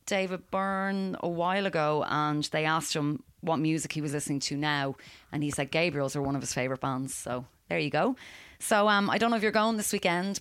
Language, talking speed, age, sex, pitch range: English, 230 wpm, 30-49, female, 135-155 Hz